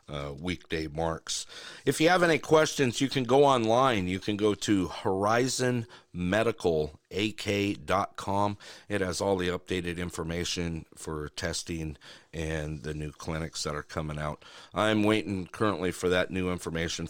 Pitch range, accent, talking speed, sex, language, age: 85-110 Hz, American, 140 wpm, male, English, 50-69